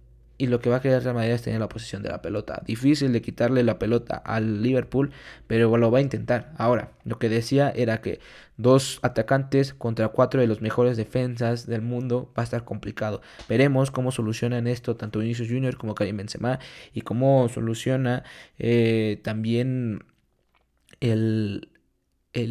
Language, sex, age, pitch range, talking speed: Spanish, male, 20-39, 110-130 Hz, 170 wpm